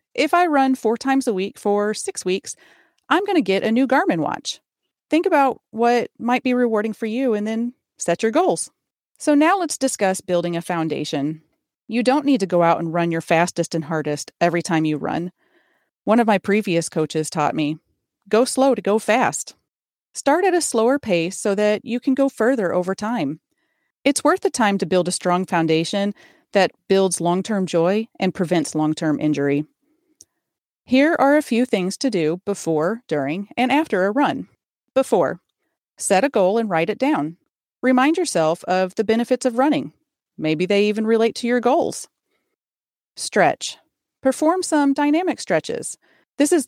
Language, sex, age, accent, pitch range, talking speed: English, female, 30-49, American, 175-265 Hz, 175 wpm